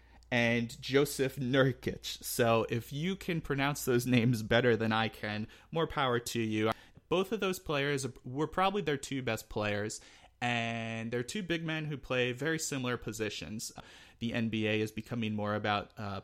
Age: 30-49